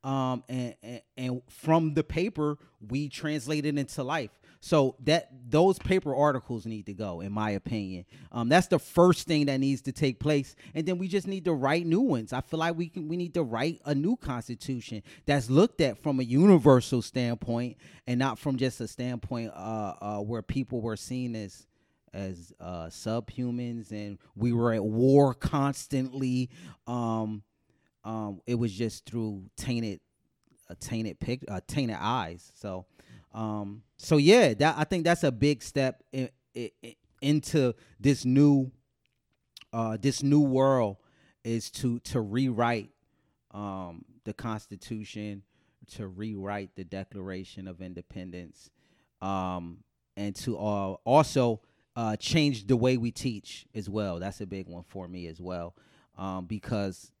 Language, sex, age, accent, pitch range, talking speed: English, male, 30-49, American, 105-140 Hz, 160 wpm